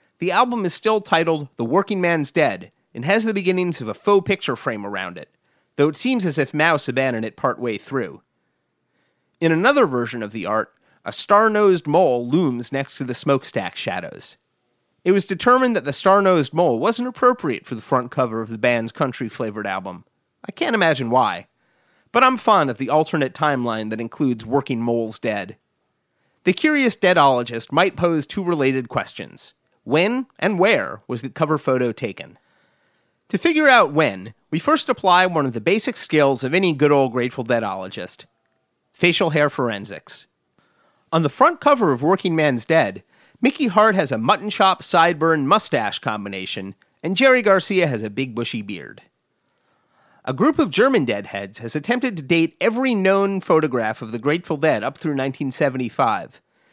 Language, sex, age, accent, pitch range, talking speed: English, male, 30-49, American, 125-200 Hz, 170 wpm